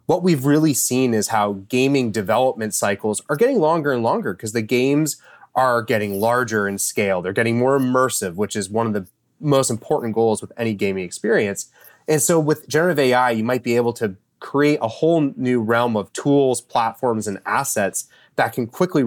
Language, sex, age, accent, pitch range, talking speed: English, male, 30-49, American, 105-130 Hz, 190 wpm